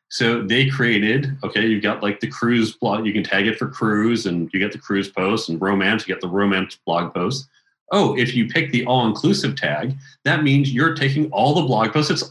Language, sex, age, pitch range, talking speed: English, male, 40-59, 110-140 Hz, 230 wpm